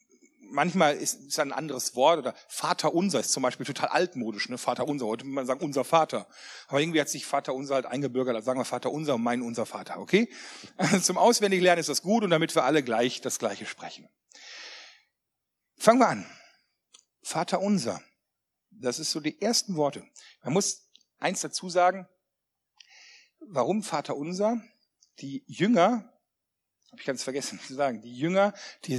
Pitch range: 140-195 Hz